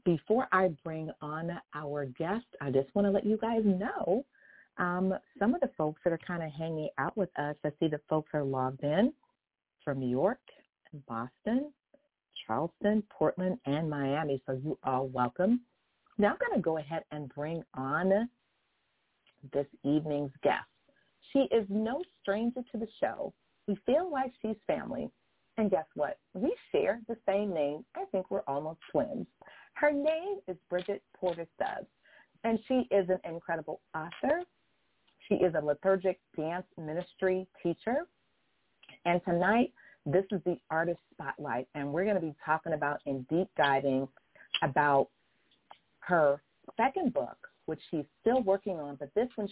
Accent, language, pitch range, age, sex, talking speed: American, English, 150-205 Hz, 40-59, female, 160 wpm